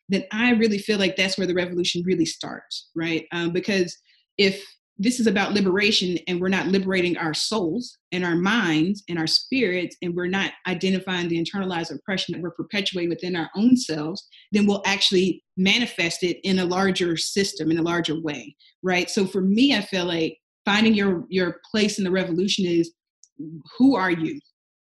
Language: English